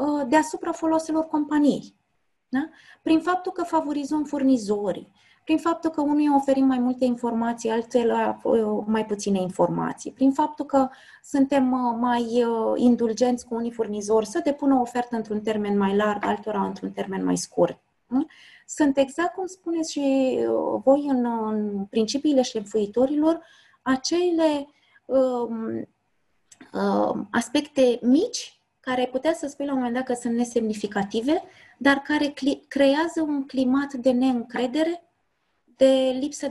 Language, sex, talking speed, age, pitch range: Romanian, female, 130 wpm, 20-39, 225-290 Hz